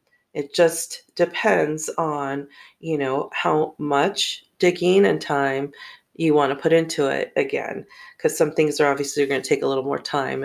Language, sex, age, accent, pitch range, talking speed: English, female, 40-59, American, 155-205 Hz, 170 wpm